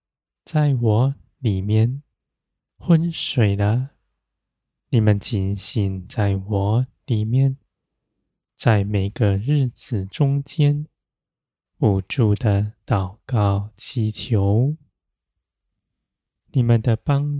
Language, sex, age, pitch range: Chinese, male, 20-39, 100-135 Hz